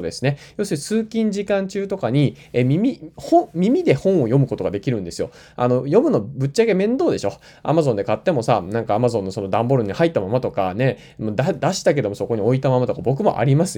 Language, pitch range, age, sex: Japanese, 120-175 Hz, 20-39, male